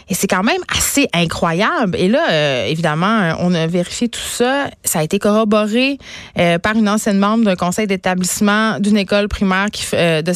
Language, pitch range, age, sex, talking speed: French, 185-225 Hz, 30-49, female, 195 wpm